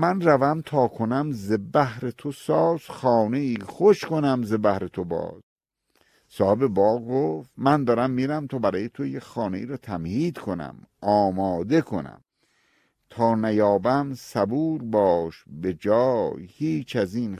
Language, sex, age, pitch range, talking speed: Persian, male, 50-69, 105-140 Hz, 145 wpm